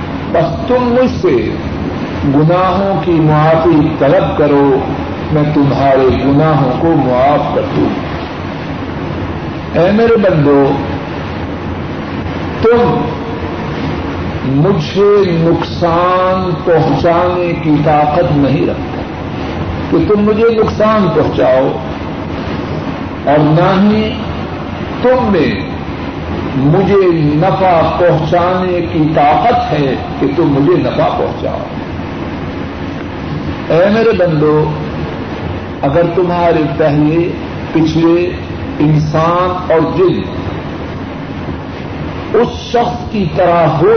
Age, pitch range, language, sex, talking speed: 60-79, 140-185 Hz, Urdu, male, 85 wpm